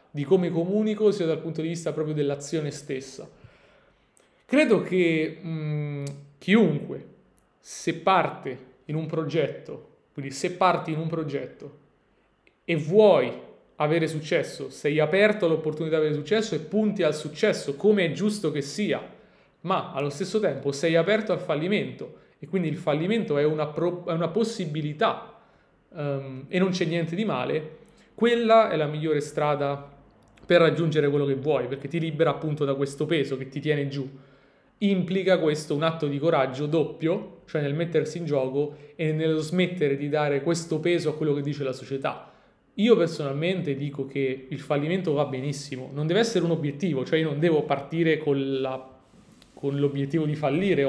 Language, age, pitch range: Italian, 30-49, 140-175 Hz